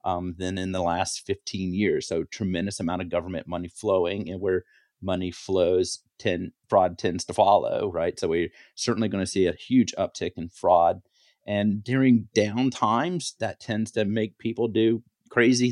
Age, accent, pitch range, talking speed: 30-49, American, 95-125 Hz, 175 wpm